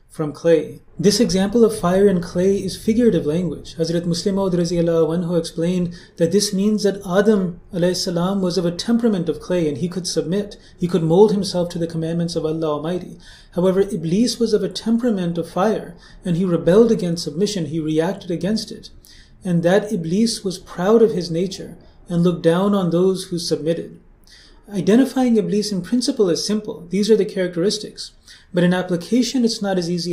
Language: English